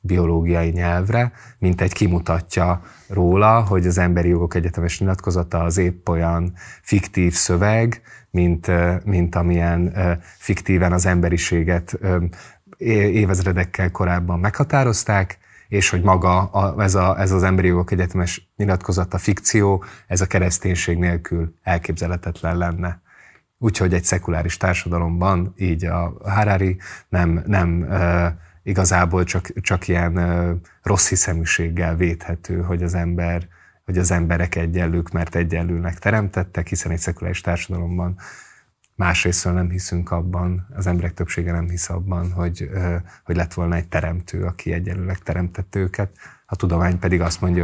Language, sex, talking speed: Hungarian, male, 125 wpm